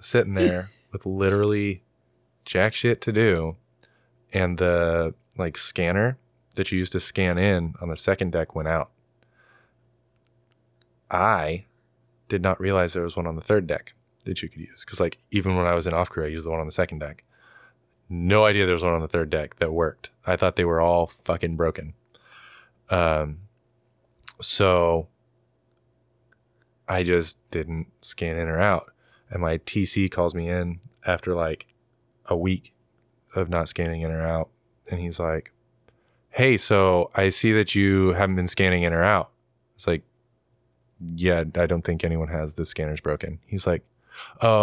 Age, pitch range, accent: 20-39, 80-95 Hz, American